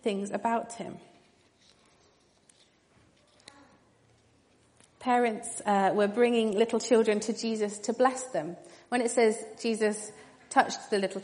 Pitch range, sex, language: 205-235 Hz, female, English